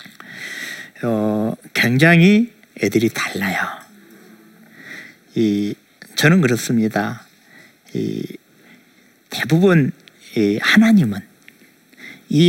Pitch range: 115-185 Hz